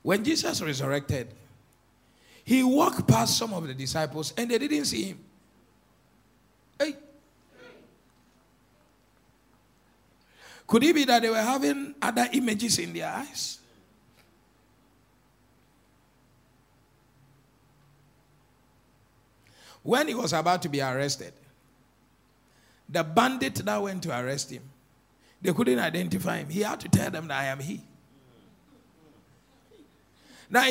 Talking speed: 110 wpm